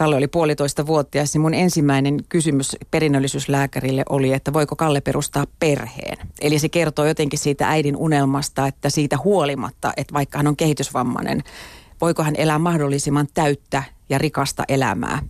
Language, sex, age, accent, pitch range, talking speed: Finnish, female, 40-59, native, 140-160 Hz, 145 wpm